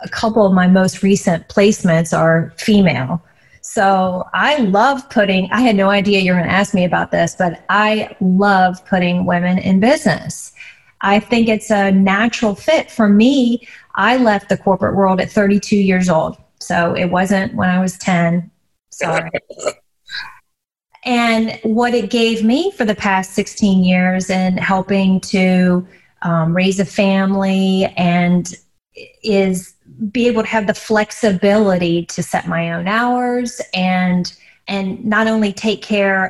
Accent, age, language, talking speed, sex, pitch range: American, 30-49, English, 155 wpm, female, 185-215 Hz